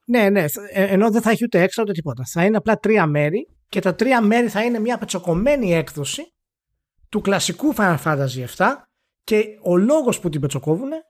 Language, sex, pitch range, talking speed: Greek, male, 170-230 Hz, 190 wpm